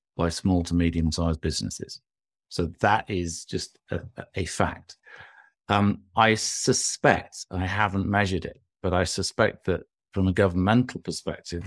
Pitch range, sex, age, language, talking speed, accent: 85-100 Hz, male, 50-69, English, 135 wpm, British